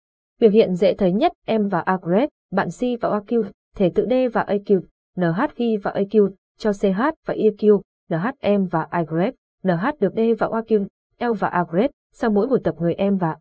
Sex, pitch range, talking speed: female, 185-235 Hz, 195 wpm